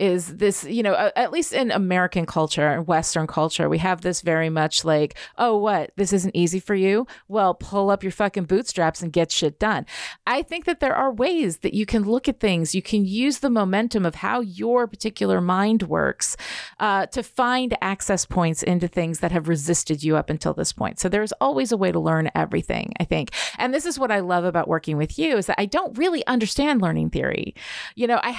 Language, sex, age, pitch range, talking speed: English, female, 30-49, 165-220 Hz, 220 wpm